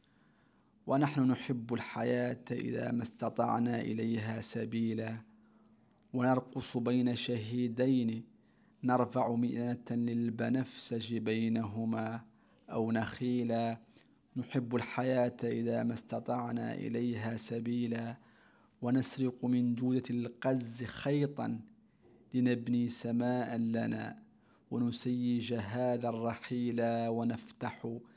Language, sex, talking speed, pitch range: Arabic, male, 75 wpm, 115-125 Hz